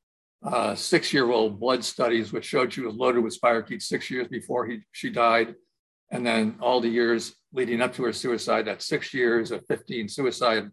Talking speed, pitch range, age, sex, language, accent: 185 wpm, 110-135 Hz, 60-79, male, English, American